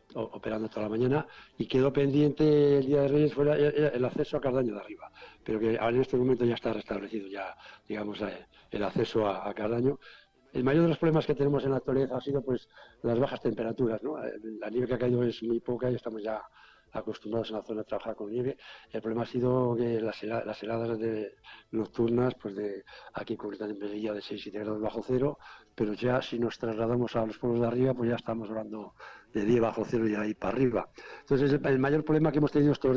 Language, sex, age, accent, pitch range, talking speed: Spanish, male, 60-79, Spanish, 110-135 Hz, 225 wpm